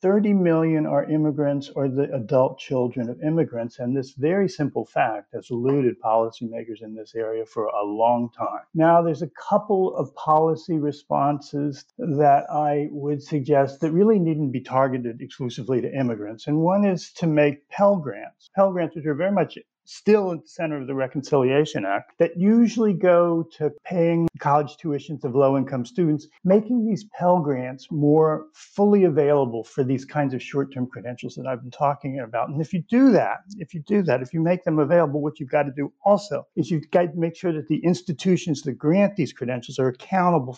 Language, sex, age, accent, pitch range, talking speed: English, male, 50-69, American, 135-170 Hz, 190 wpm